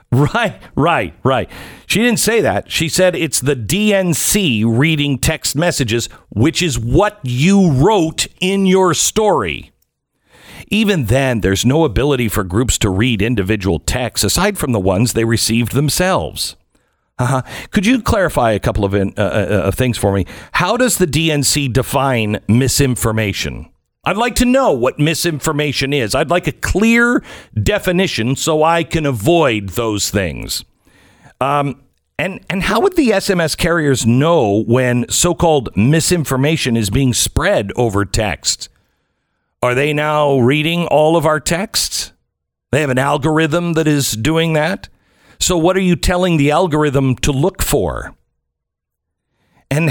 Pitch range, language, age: 115-170 Hz, English, 50-69